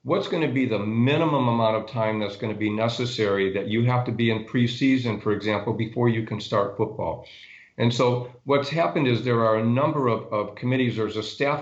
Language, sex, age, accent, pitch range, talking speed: English, male, 50-69, American, 105-125 Hz, 220 wpm